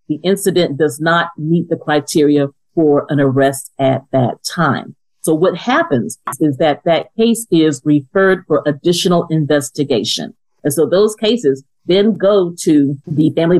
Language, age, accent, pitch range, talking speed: English, 50-69, American, 145-185 Hz, 150 wpm